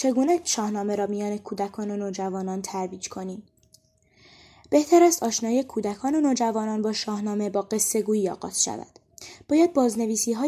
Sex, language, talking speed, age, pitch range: female, Persian, 140 wpm, 10-29, 200-245 Hz